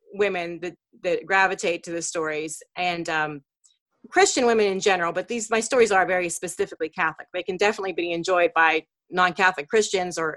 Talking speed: 175 wpm